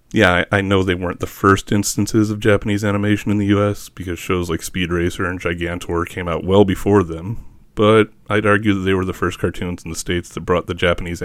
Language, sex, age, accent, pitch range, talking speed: English, male, 30-49, American, 85-100 Hz, 225 wpm